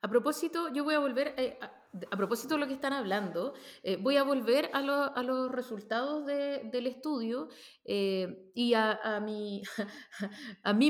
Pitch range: 200-255 Hz